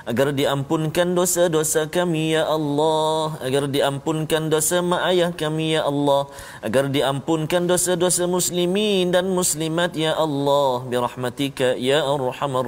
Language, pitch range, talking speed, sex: Malayalam, 130-175 Hz, 115 wpm, male